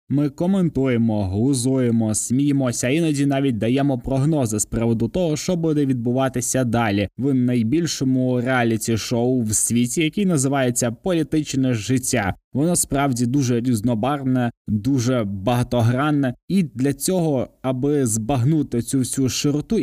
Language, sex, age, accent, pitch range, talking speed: Ukrainian, male, 20-39, native, 115-140 Hz, 115 wpm